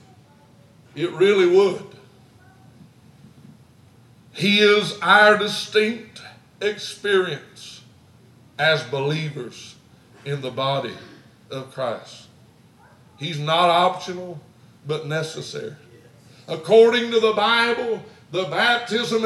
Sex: male